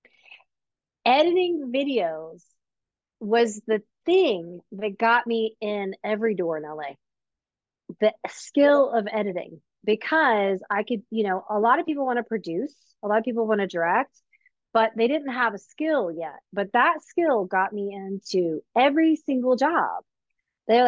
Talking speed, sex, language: 150 wpm, female, English